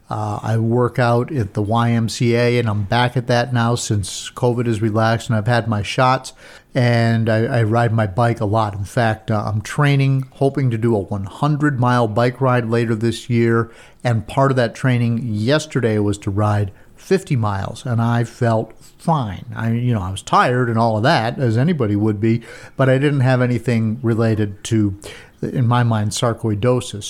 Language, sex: English, male